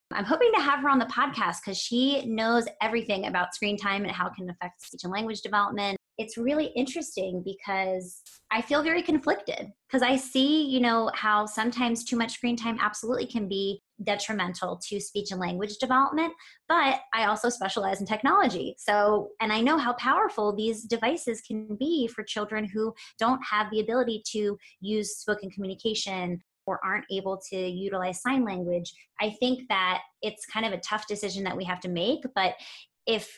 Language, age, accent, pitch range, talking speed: English, 20-39, American, 195-245 Hz, 185 wpm